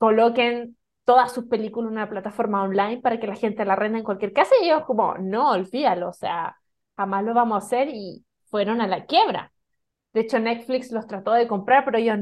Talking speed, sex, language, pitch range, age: 210 wpm, female, Spanish, 210-265 Hz, 20-39